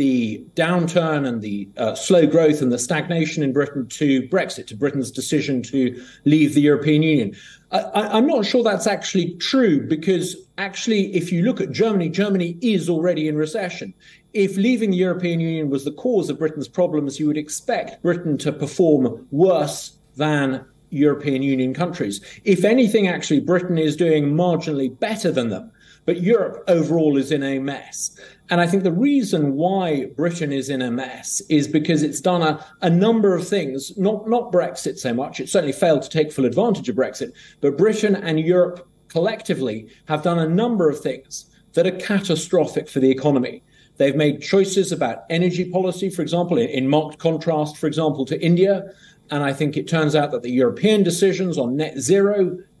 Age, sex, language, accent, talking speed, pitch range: 40-59, male, English, British, 180 wpm, 145-185 Hz